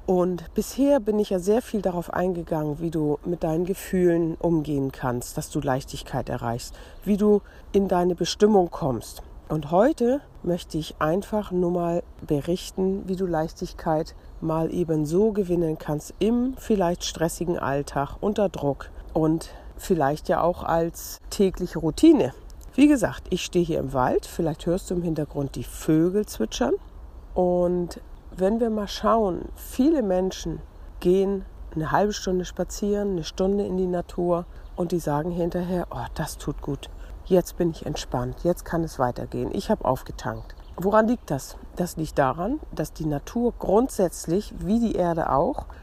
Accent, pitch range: German, 160-200 Hz